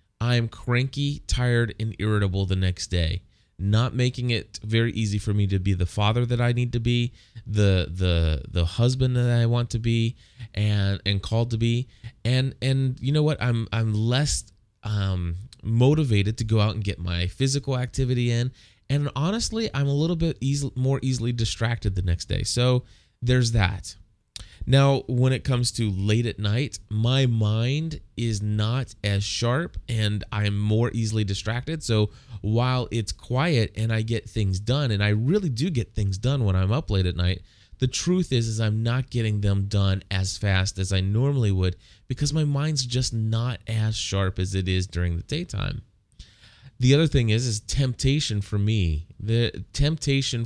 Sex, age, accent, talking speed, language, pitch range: male, 20-39, American, 180 wpm, English, 100-125 Hz